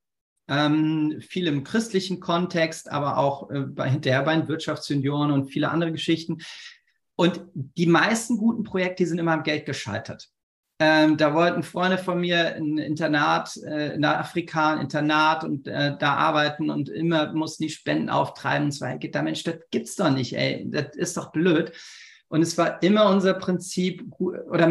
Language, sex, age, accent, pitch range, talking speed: German, male, 40-59, German, 145-175 Hz, 170 wpm